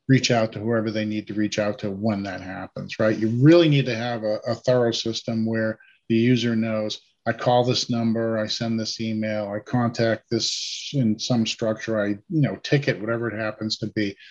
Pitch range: 110-135 Hz